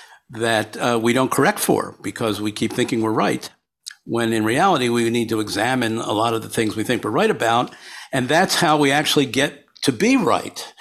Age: 50-69